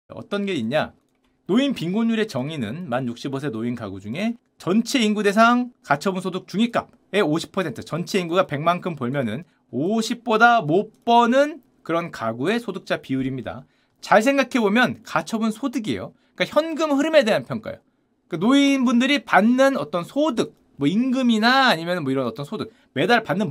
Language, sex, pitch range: Korean, male, 155-235 Hz